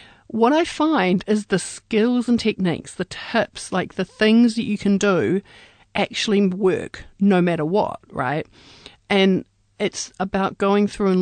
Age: 40-59